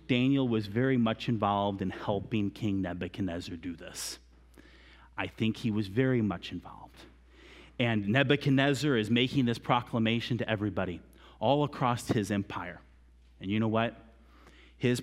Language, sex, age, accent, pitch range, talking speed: English, male, 30-49, American, 85-140 Hz, 140 wpm